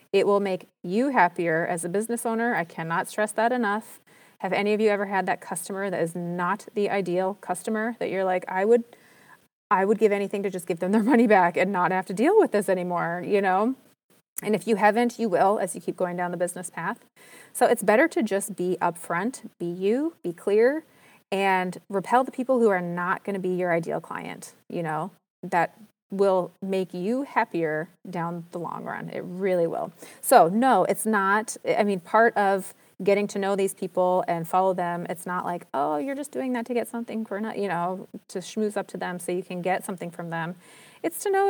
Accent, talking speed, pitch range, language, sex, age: American, 220 wpm, 180-230 Hz, English, female, 30-49